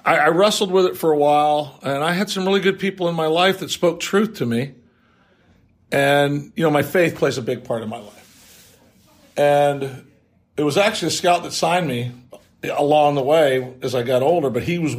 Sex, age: male, 50-69